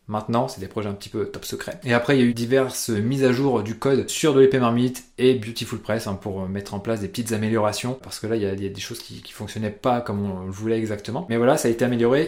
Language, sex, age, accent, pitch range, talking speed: French, male, 20-39, French, 110-130 Hz, 300 wpm